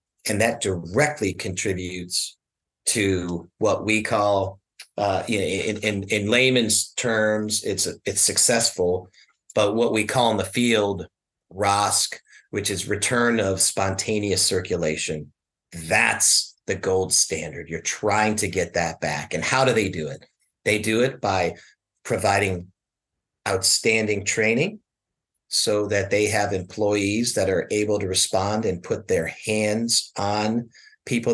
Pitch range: 95-110 Hz